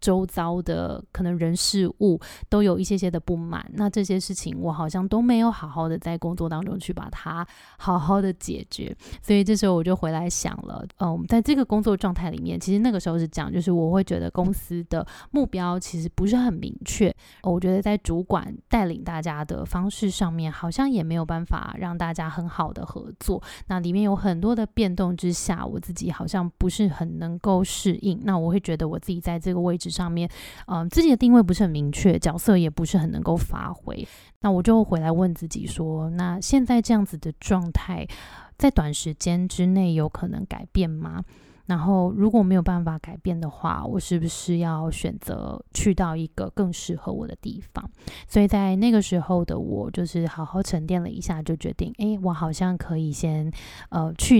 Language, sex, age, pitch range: Chinese, female, 20-39, 170-200 Hz